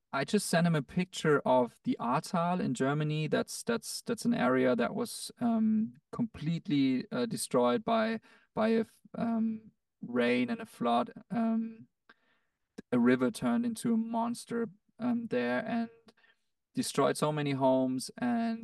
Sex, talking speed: male, 150 wpm